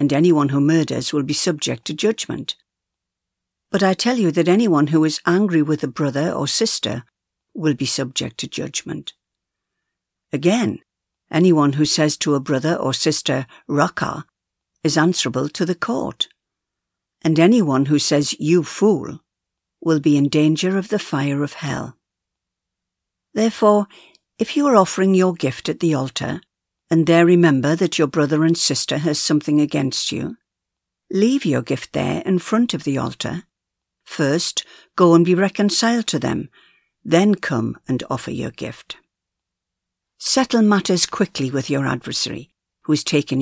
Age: 60-79